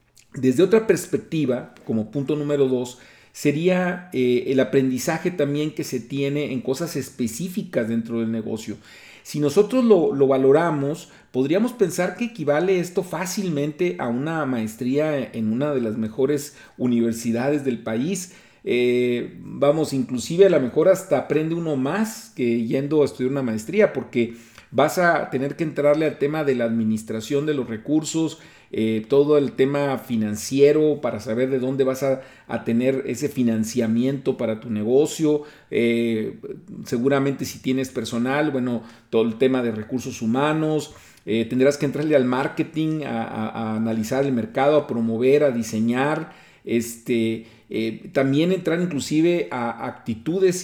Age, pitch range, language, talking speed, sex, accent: 40-59, 115-150 Hz, Spanish, 150 wpm, male, Mexican